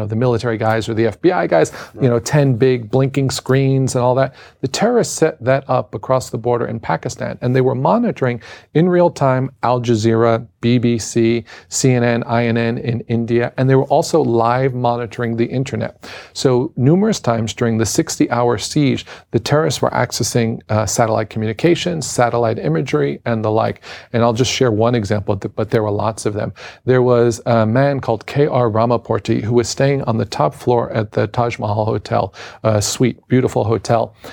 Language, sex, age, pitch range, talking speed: English, male, 40-59, 115-130 Hz, 180 wpm